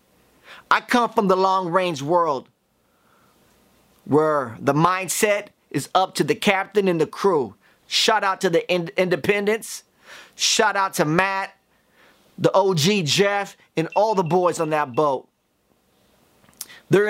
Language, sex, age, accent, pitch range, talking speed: English, male, 30-49, American, 160-205 Hz, 130 wpm